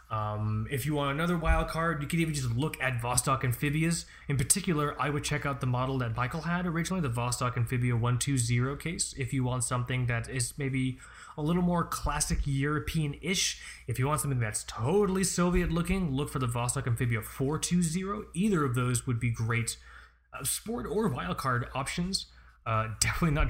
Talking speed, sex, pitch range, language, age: 180 wpm, male, 110-150 Hz, English, 20-39